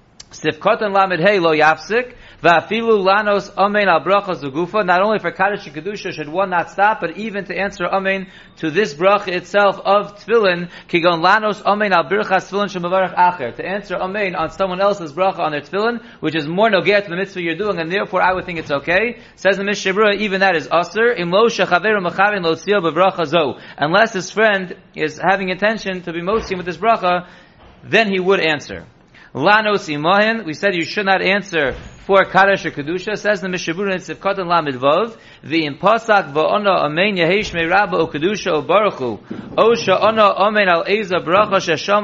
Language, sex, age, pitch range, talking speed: English, male, 30-49, 170-205 Hz, 115 wpm